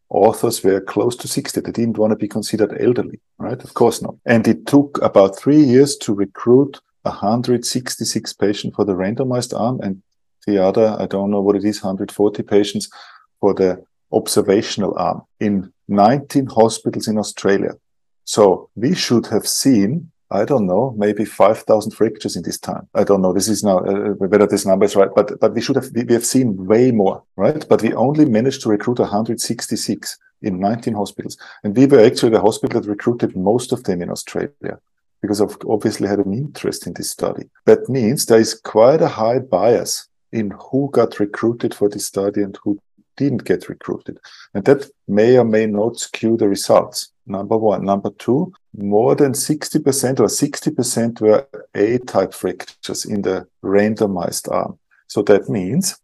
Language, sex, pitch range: English, male, 100-120 Hz